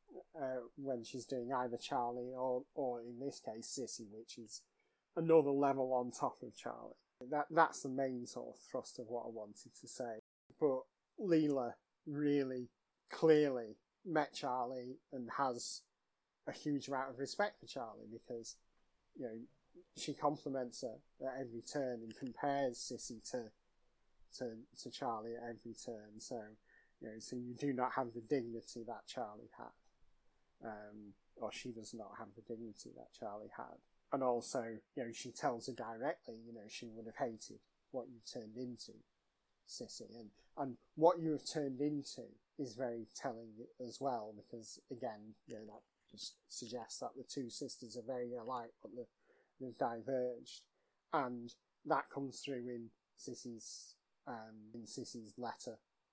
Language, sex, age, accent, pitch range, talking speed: English, male, 30-49, British, 115-135 Hz, 160 wpm